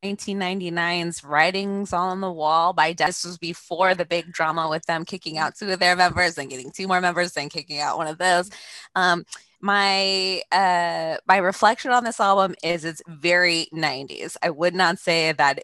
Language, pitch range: English, 155-185 Hz